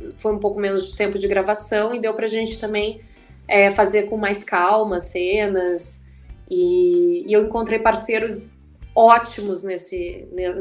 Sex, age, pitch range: female, 20-39, 185-260 Hz